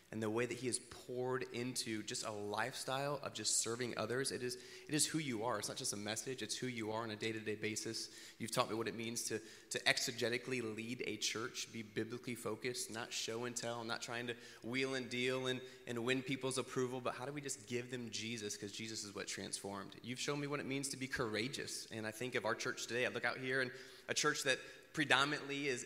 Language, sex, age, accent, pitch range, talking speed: English, male, 20-39, American, 110-130 Hz, 240 wpm